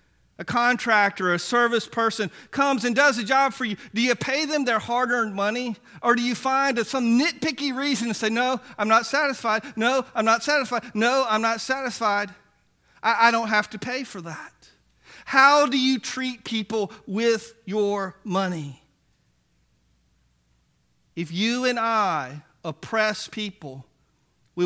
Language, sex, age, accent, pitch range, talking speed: English, male, 40-59, American, 175-235 Hz, 155 wpm